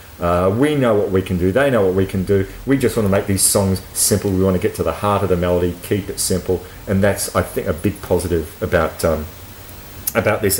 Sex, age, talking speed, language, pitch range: male, 30-49, 255 wpm, English, 90-100 Hz